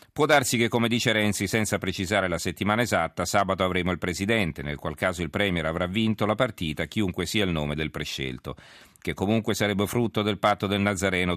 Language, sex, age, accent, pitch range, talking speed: Italian, male, 40-59, native, 85-105 Hz, 200 wpm